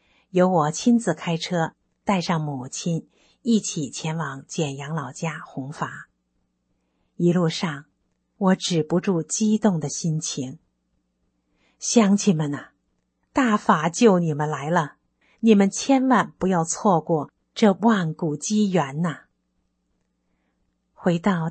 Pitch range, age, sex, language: 145-200 Hz, 50-69, female, Chinese